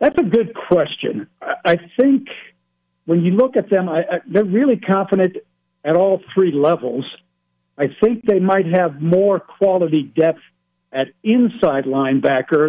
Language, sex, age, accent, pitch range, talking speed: English, male, 60-79, American, 140-170 Hz, 135 wpm